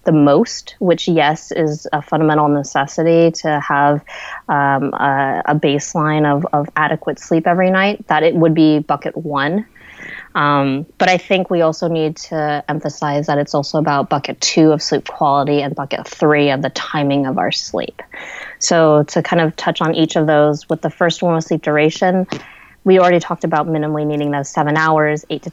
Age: 20-39